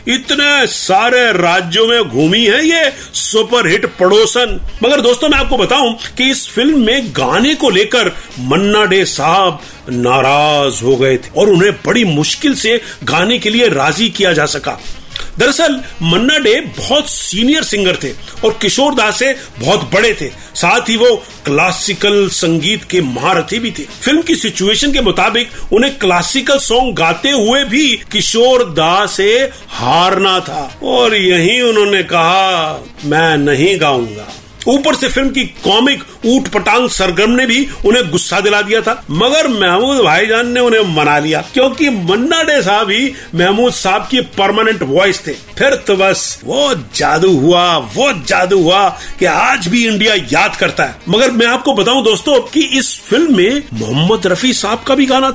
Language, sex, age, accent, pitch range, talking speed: Hindi, male, 50-69, native, 180-260 Hz, 160 wpm